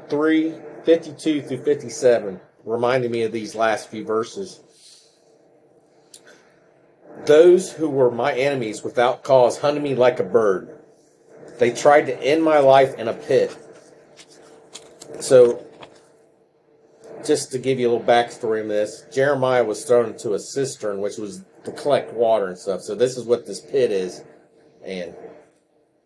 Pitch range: 125-160 Hz